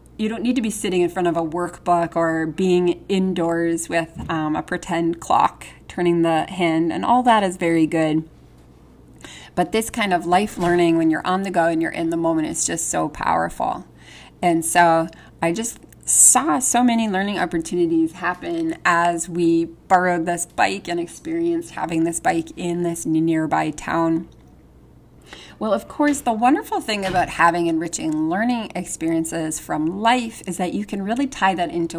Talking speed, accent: 175 wpm, American